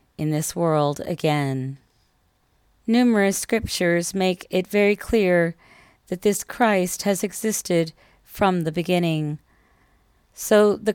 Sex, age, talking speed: female, 40-59, 110 wpm